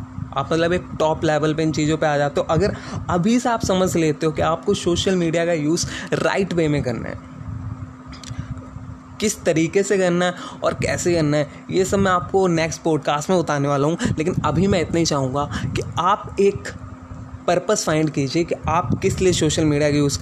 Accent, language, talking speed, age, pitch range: native, Hindi, 200 wpm, 20-39, 130-165 Hz